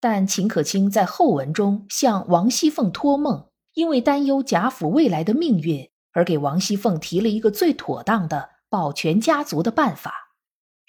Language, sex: Chinese, female